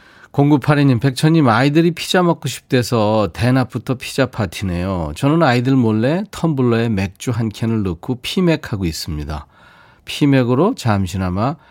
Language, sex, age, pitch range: Korean, male, 40-59, 100-140 Hz